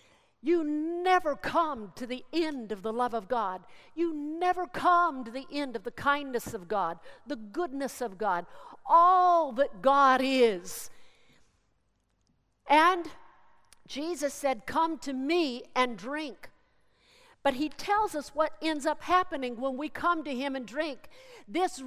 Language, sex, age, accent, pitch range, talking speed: English, female, 50-69, American, 265-330 Hz, 150 wpm